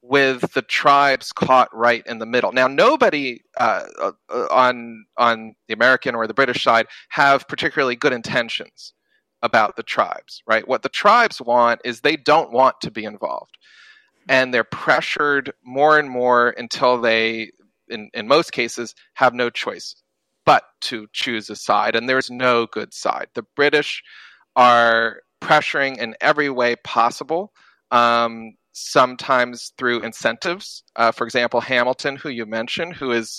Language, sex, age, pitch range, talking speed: English, male, 30-49, 115-135 Hz, 155 wpm